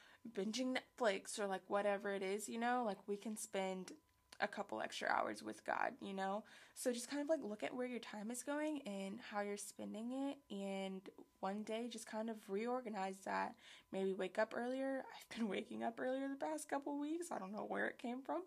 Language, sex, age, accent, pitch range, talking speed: English, female, 20-39, American, 195-245 Hz, 215 wpm